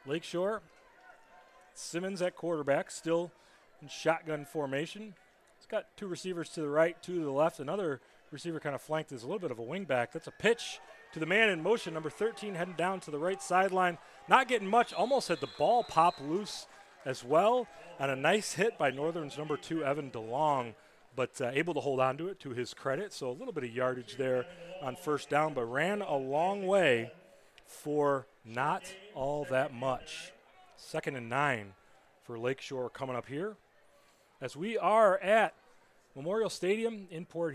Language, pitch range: English, 130-175 Hz